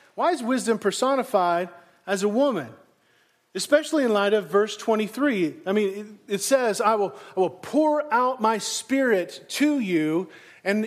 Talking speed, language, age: 155 wpm, English, 40-59